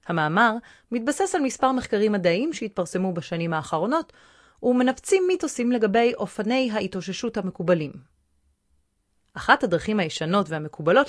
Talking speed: 105 wpm